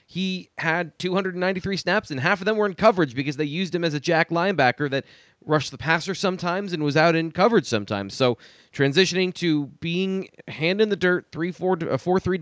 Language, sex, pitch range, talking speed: English, male, 135-175 Hz, 190 wpm